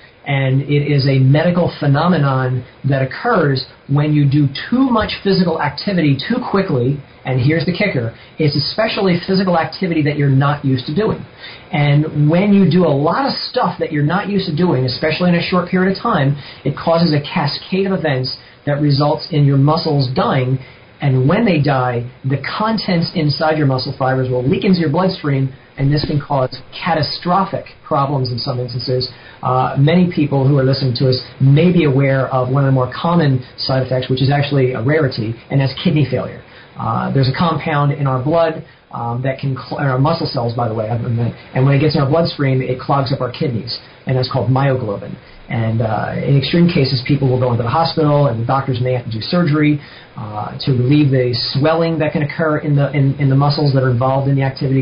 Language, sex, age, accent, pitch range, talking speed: English, male, 40-59, American, 130-160 Hz, 205 wpm